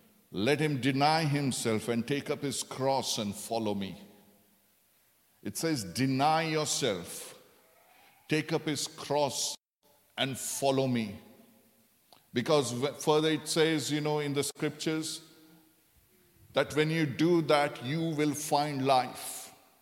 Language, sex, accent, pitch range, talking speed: English, male, Indian, 135-165 Hz, 125 wpm